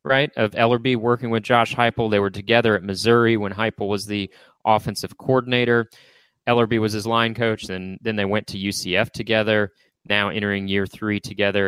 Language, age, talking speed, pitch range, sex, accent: English, 30-49, 185 wpm, 100-120 Hz, male, American